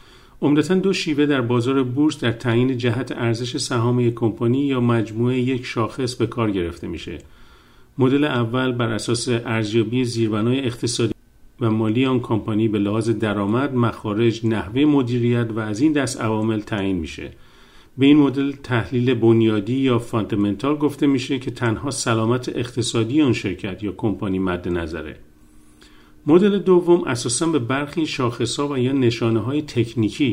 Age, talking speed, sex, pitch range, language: 50-69, 145 wpm, male, 110-130 Hz, Persian